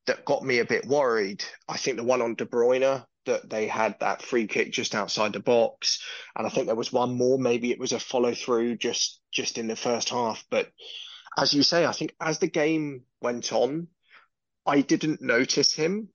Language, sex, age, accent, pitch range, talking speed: English, male, 30-49, British, 115-160 Hz, 210 wpm